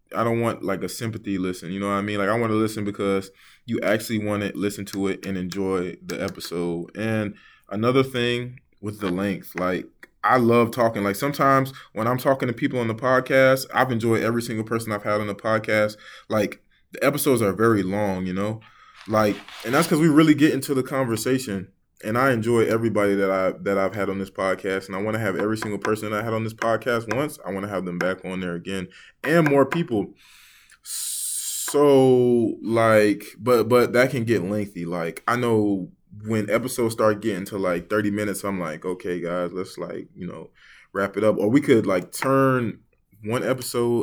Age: 20-39